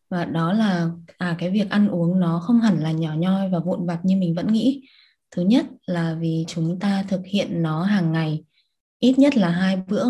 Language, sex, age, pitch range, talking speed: Vietnamese, female, 20-39, 175-220 Hz, 215 wpm